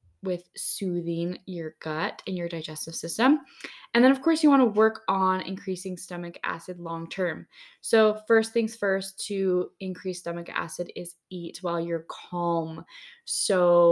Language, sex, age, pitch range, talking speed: English, female, 10-29, 175-215 Hz, 150 wpm